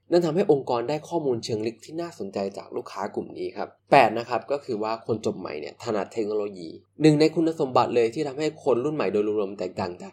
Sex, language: male, Thai